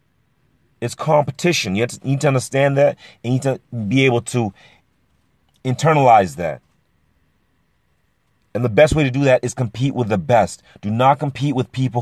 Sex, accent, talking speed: male, American, 180 wpm